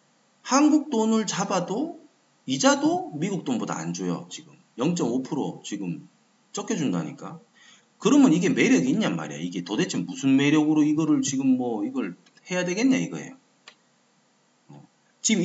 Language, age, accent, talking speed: English, 30-49, Korean, 115 wpm